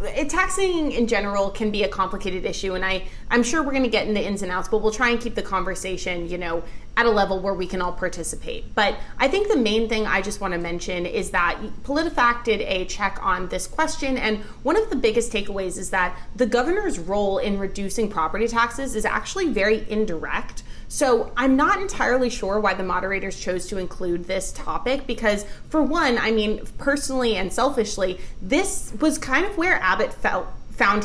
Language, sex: English, female